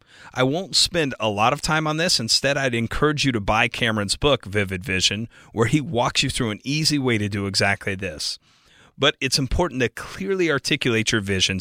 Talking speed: 200 wpm